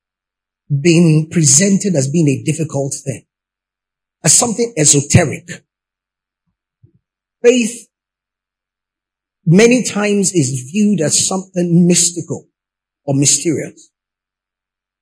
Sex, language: male, English